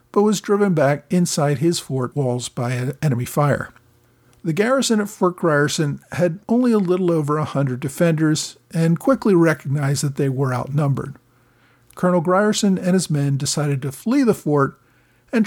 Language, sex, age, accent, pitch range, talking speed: English, male, 50-69, American, 135-180 Hz, 165 wpm